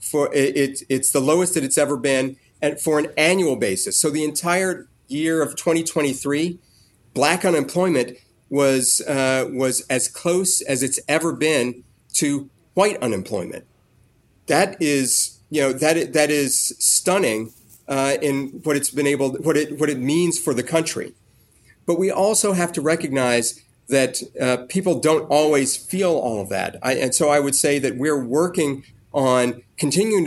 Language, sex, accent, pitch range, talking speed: English, male, American, 125-160 Hz, 165 wpm